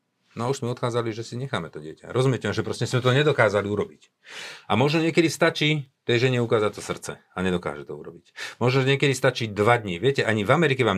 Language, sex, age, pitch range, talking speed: Slovak, male, 50-69, 95-125 Hz, 215 wpm